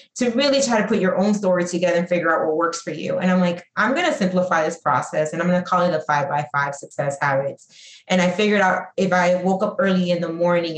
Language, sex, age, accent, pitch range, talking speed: English, female, 20-39, American, 160-185 Hz, 260 wpm